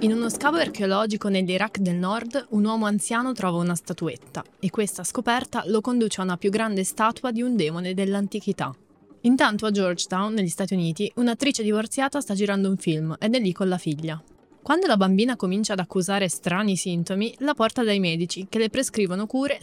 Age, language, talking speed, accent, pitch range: 20-39, Italian, 185 wpm, native, 175-220 Hz